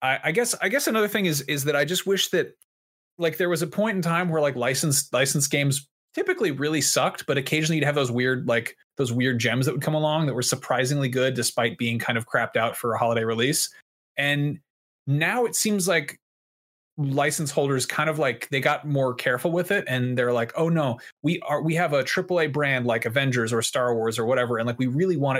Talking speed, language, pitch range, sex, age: 230 wpm, English, 125-160 Hz, male, 30-49